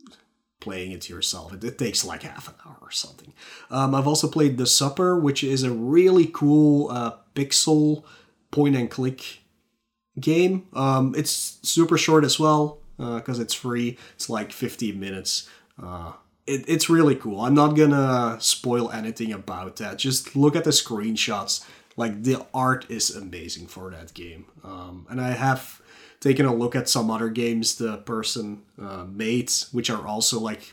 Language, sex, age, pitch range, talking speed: English, male, 30-49, 105-145 Hz, 165 wpm